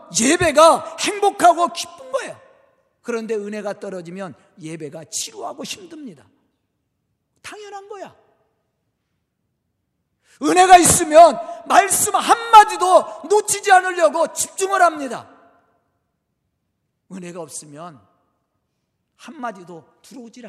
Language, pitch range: Korean, 230-350 Hz